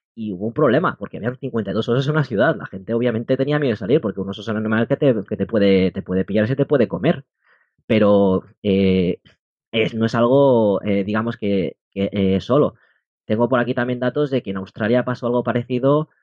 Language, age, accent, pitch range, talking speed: Spanish, 20-39, Spanish, 100-125 Hz, 225 wpm